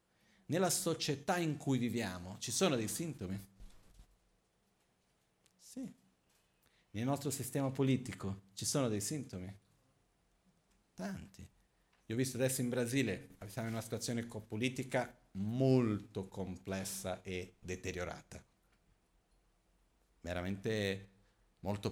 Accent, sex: native, male